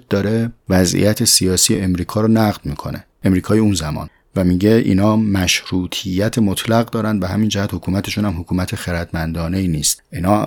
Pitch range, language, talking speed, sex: 90-110 Hz, Persian, 145 wpm, male